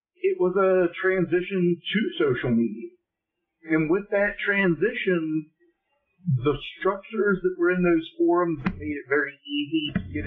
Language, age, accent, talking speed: English, 50-69, American, 145 wpm